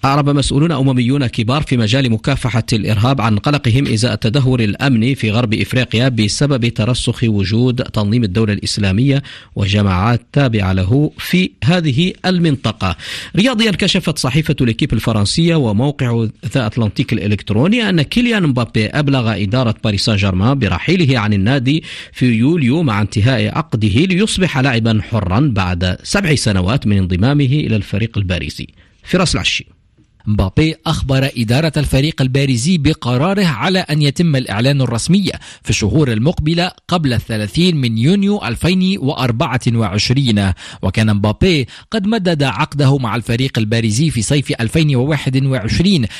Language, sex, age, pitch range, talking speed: Arabic, male, 50-69, 110-160 Hz, 125 wpm